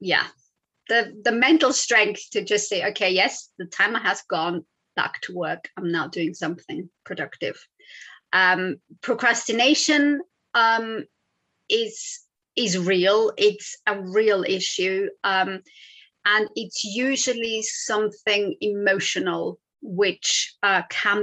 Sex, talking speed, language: female, 115 wpm, English